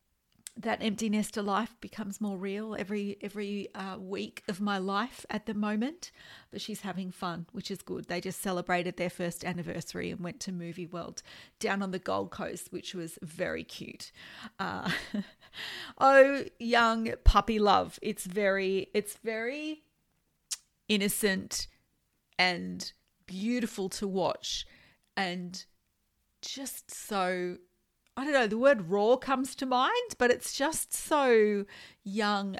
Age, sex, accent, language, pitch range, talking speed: 40-59, female, Australian, English, 185-230 Hz, 140 wpm